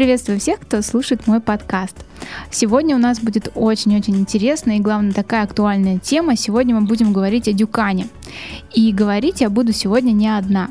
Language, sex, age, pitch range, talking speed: Russian, female, 10-29, 205-245 Hz, 170 wpm